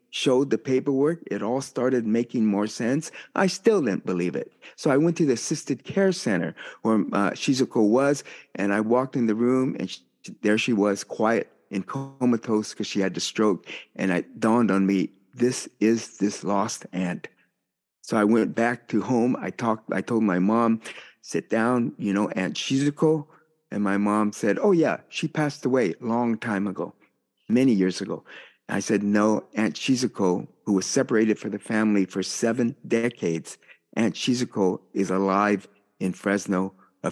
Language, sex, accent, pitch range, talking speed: English, male, American, 100-125 Hz, 175 wpm